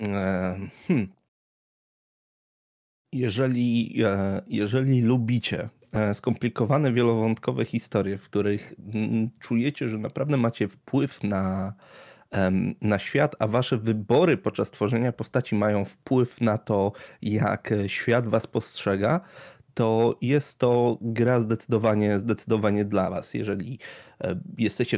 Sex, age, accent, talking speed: male, 30-49, native, 95 wpm